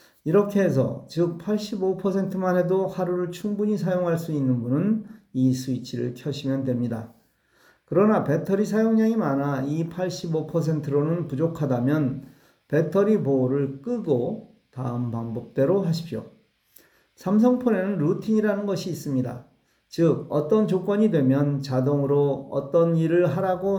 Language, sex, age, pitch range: Korean, male, 40-59, 135-185 Hz